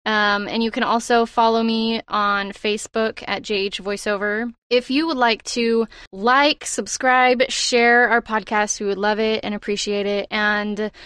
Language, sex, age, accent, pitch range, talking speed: English, female, 20-39, American, 205-235 Hz, 165 wpm